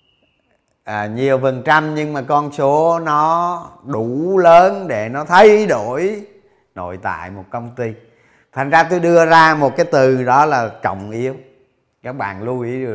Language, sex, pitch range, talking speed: Vietnamese, male, 125-165 Hz, 170 wpm